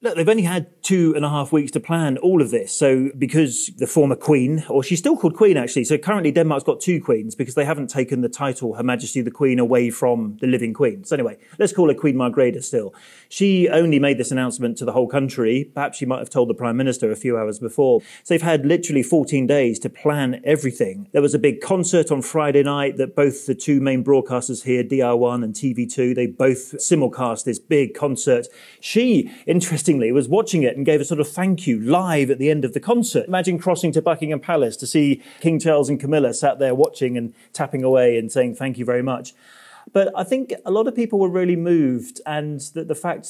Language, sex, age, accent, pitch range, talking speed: English, male, 30-49, British, 130-170 Hz, 225 wpm